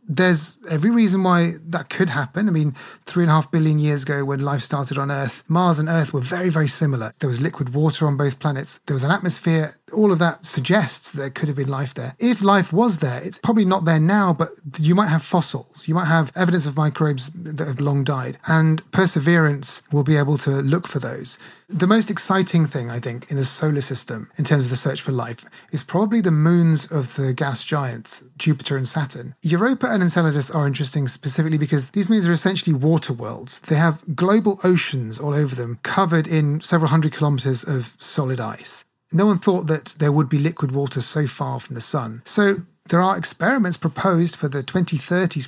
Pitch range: 140-175 Hz